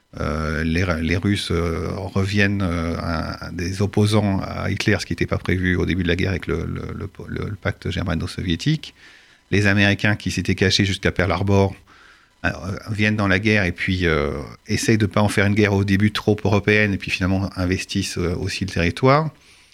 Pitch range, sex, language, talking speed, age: 90-110 Hz, male, French, 200 wpm, 40-59